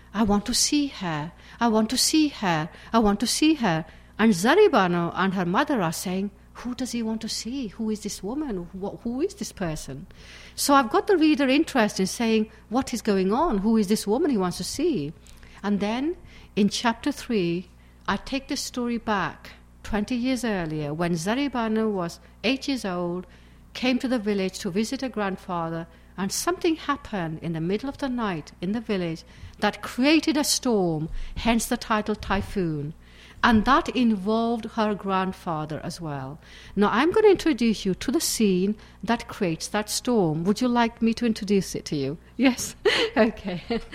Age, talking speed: 60-79, 185 wpm